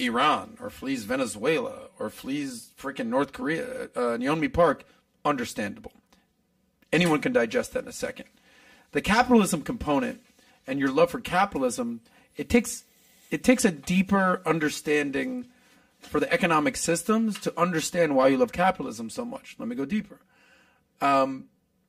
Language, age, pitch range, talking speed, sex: English, 40-59, 175-250 Hz, 145 wpm, male